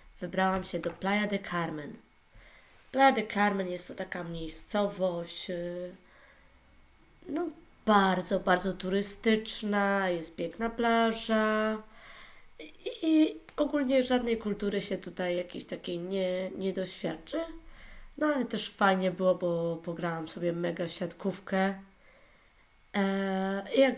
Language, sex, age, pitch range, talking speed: Polish, female, 20-39, 180-220 Hz, 115 wpm